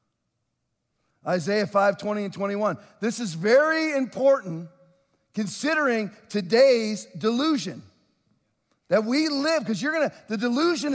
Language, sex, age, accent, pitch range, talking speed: English, male, 40-59, American, 195-260 Hz, 110 wpm